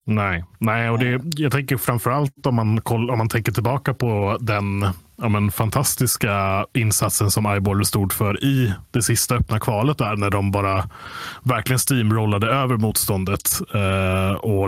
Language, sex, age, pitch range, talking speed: Swedish, male, 30-49, 100-120 Hz, 160 wpm